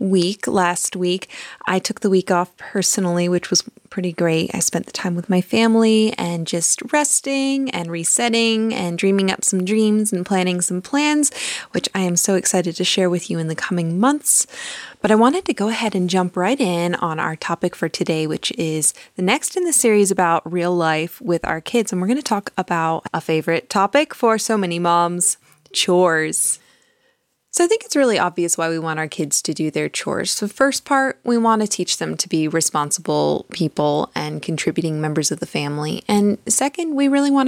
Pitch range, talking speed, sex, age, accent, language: 165-215 Hz, 205 wpm, female, 20-39, American, English